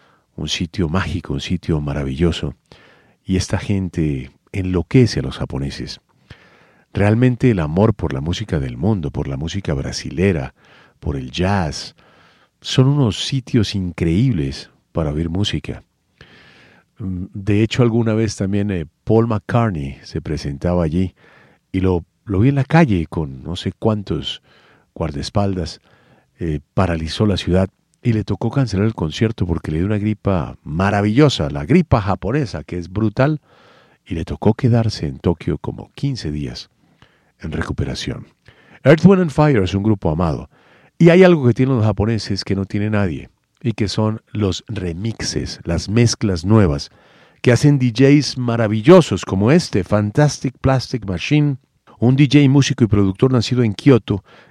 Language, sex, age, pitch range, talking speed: Spanish, male, 50-69, 90-120 Hz, 150 wpm